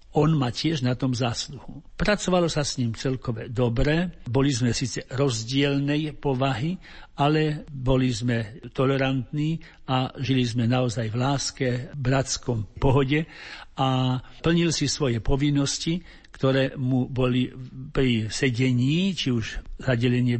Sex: male